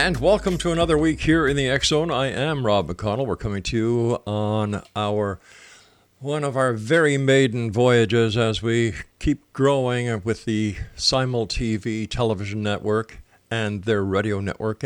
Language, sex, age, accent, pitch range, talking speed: English, male, 50-69, American, 100-130 Hz, 160 wpm